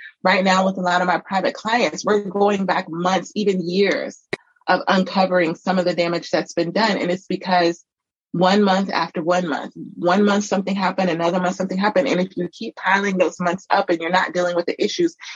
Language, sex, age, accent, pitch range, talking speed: English, female, 30-49, American, 175-195 Hz, 215 wpm